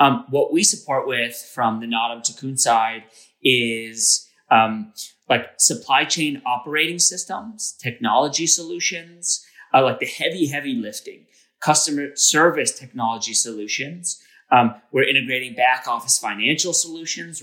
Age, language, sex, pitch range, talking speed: 30-49, English, male, 115-150 Hz, 125 wpm